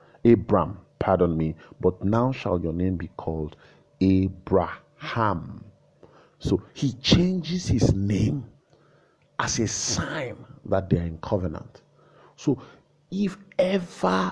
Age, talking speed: 50-69, 115 wpm